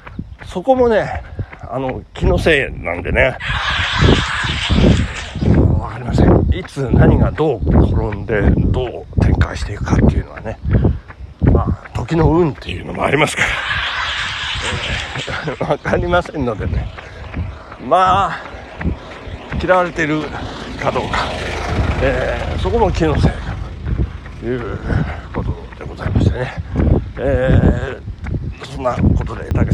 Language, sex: Japanese, male